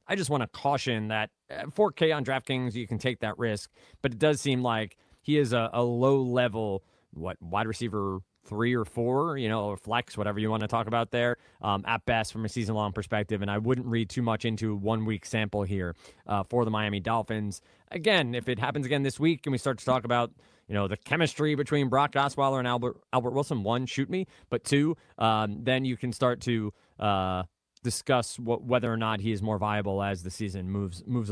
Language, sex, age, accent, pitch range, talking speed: English, male, 30-49, American, 105-135 Hz, 220 wpm